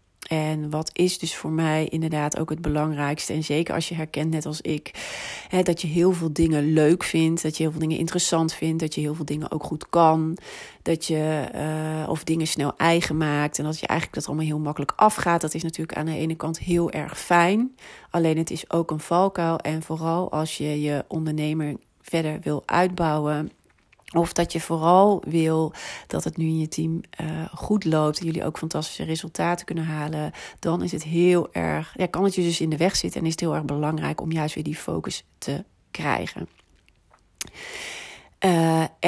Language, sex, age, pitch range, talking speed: Dutch, female, 40-59, 150-165 Hz, 205 wpm